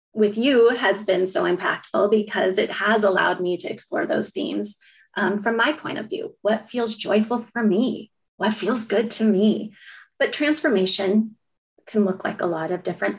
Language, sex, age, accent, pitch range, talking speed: English, female, 30-49, American, 190-220 Hz, 180 wpm